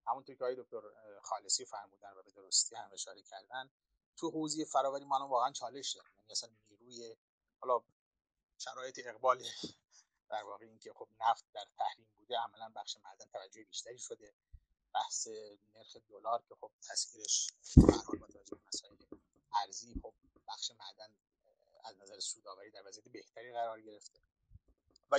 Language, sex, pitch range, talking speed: Persian, male, 110-135 Hz, 140 wpm